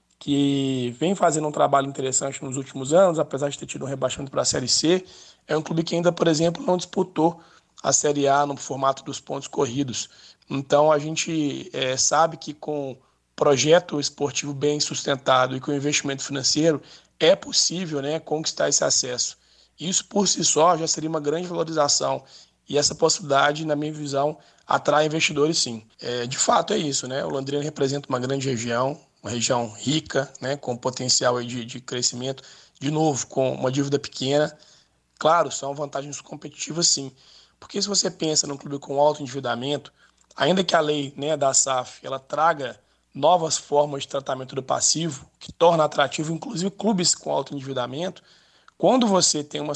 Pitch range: 135-160 Hz